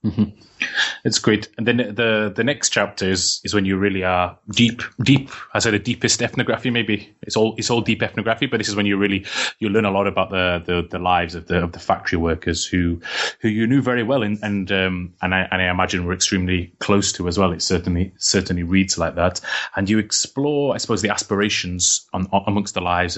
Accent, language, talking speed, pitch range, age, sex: British, English, 225 wpm, 90-110 Hz, 20-39, male